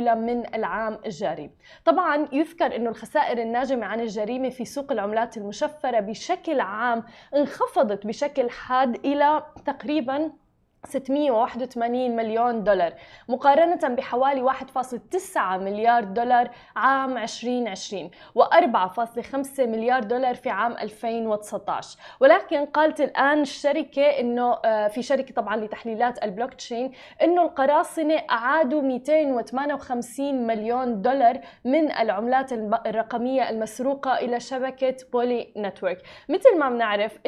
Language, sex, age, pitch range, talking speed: Arabic, female, 20-39, 225-275 Hz, 105 wpm